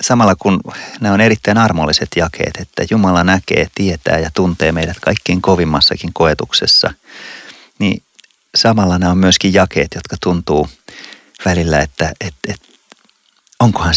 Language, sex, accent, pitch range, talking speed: Finnish, male, native, 85-100 Hz, 130 wpm